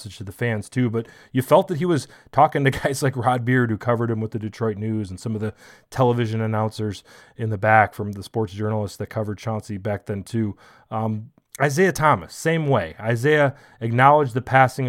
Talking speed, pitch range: 205 wpm, 105-130 Hz